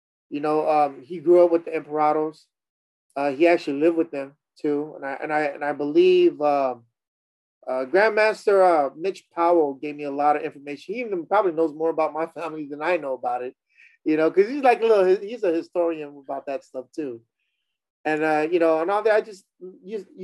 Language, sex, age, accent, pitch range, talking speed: English, male, 30-49, American, 130-165 Hz, 210 wpm